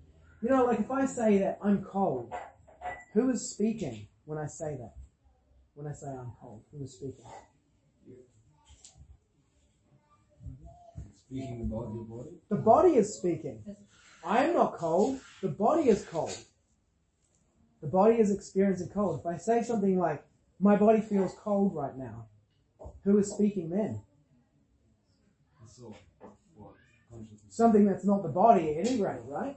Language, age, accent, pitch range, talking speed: English, 30-49, Australian, 130-210 Hz, 140 wpm